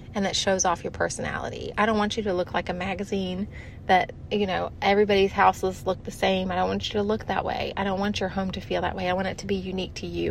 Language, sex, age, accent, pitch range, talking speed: English, female, 30-49, American, 185-215 Hz, 280 wpm